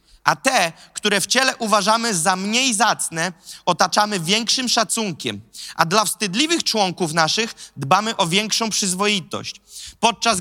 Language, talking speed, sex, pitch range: Polish, 125 wpm, male, 180-240 Hz